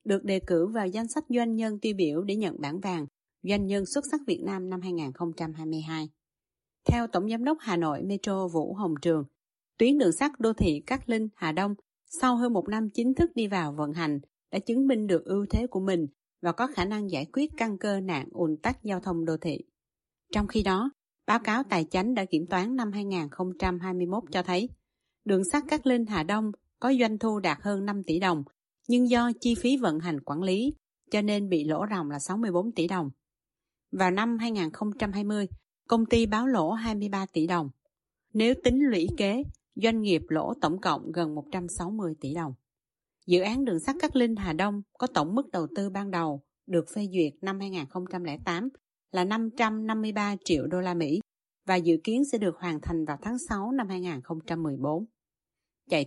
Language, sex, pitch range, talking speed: Vietnamese, female, 165-225 Hz, 195 wpm